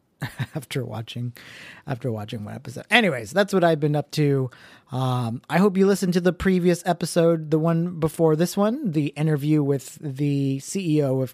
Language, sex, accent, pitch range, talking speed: English, male, American, 125-165 Hz, 175 wpm